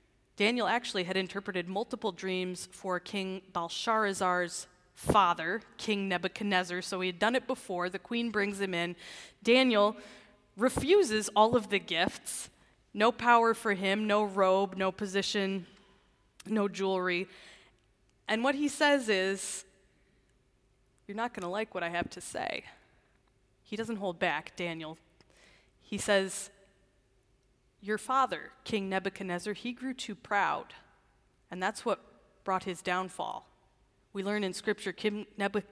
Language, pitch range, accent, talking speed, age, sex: English, 175-210 Hz, American, 135 wpm, 20-39, female